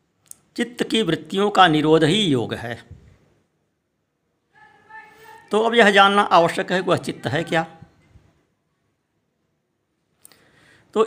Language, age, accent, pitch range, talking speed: Hindi, 60-79, native, 150-205 Hz, 105 wpm